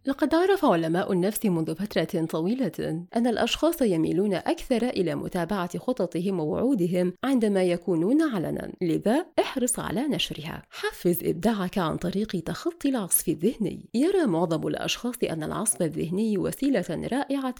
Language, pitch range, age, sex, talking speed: Arabic, 175-255 Hz, 30-49, female, 125 wpm